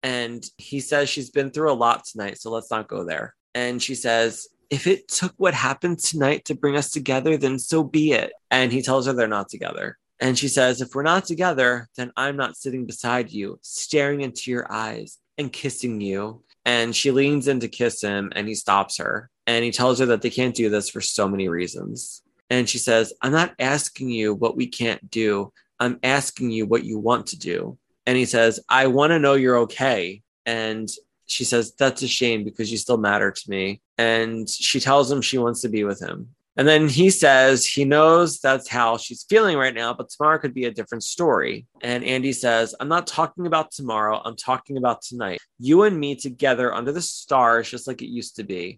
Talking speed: 215 wpm